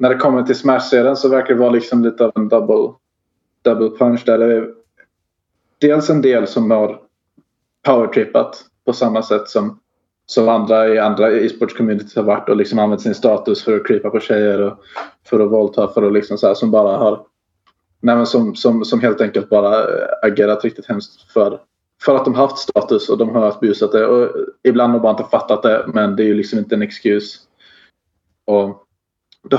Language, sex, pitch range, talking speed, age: Swedish, male, 105-125 Hz, 200 wpm, 20-39